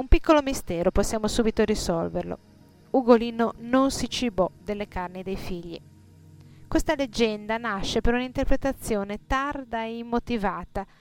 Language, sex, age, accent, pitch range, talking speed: Italian, female, 30-49, native, 190-245 Hz, 120 wpm